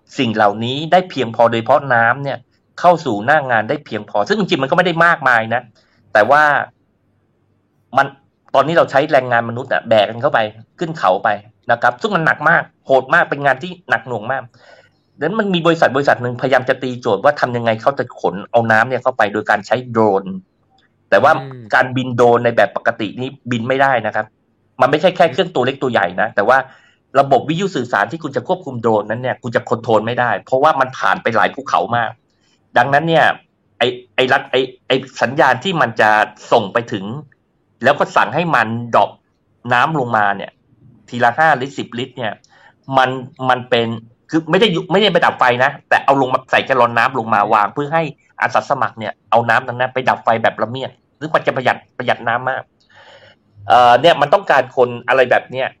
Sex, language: male, English